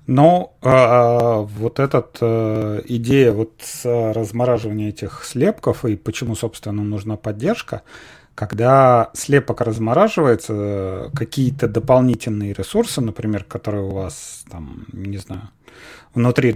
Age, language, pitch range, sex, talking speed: 30-49, Russian, 100-125 Hz, male, 110 wpm